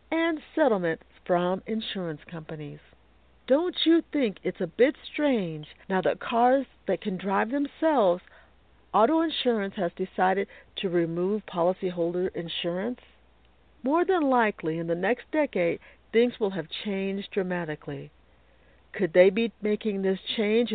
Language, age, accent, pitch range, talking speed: English, 50-69, American, 170-250 Hz, 130 wpm